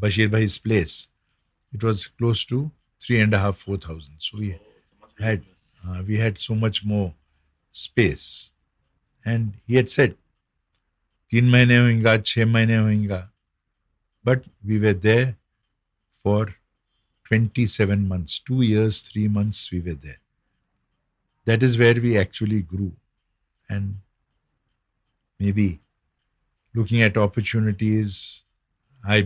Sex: male